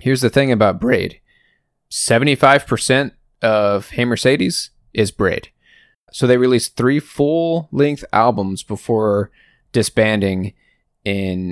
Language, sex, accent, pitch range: English, male, American, 100-140 Hz